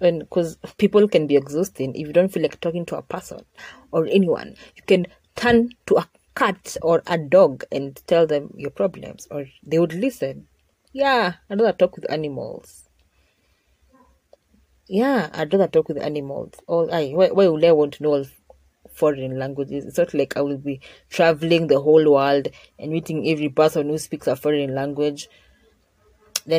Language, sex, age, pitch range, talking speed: English, female, 30-49, 135-185 Hz, 175 wpm